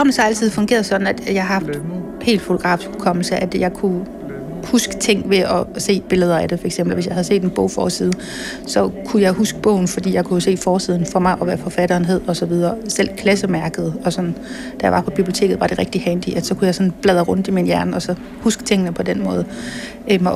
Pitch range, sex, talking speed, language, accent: 190-235 Hz, female, 235 wpm, Danish, native